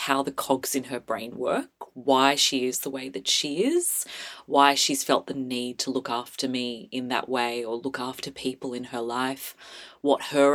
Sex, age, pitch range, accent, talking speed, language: female, 30-49, 135-175 Hz, Australian, 205 wpm, English